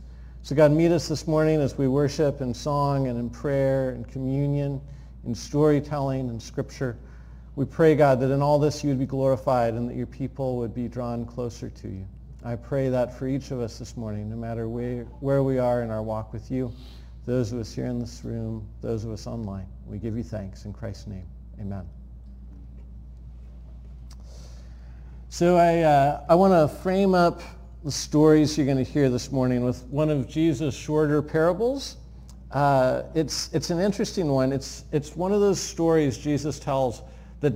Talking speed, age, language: 185 wpm, 50-69, English